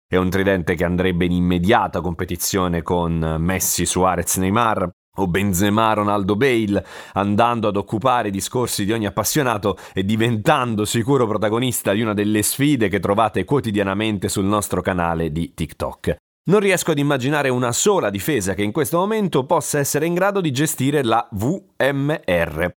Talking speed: 155 wpm